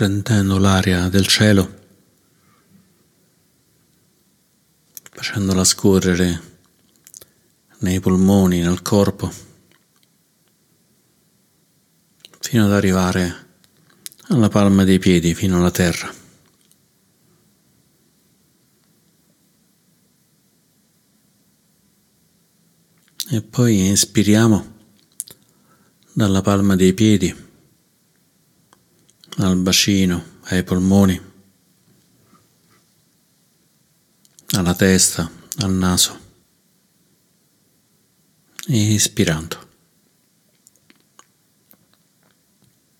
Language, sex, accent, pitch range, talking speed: Italian, male, native, 95-120 Hz, 50 wpm